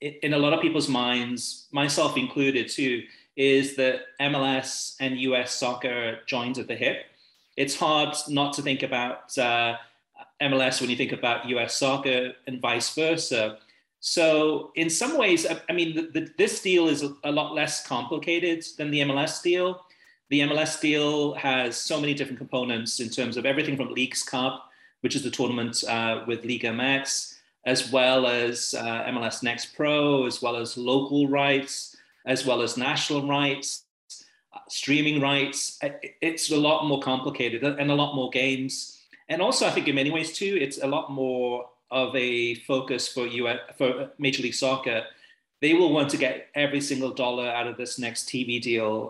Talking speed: 175 wpm